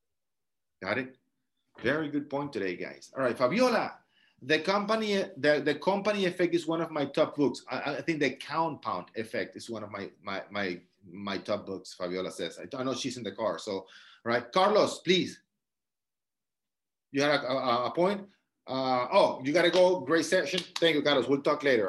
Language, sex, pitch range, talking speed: English, male, 115-150 Hz, 190 wpm